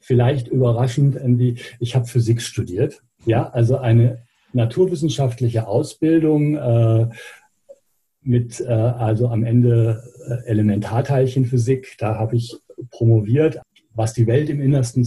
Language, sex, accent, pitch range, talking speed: German, male, German, 115-130 Hz, 110 wpm